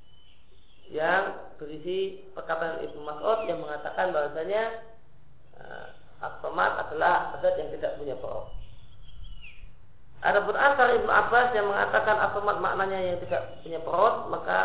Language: Indonesian